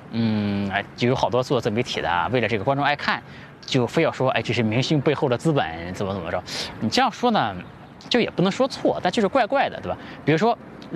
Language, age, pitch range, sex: Chinese, 20-39, 125-200 Hz, male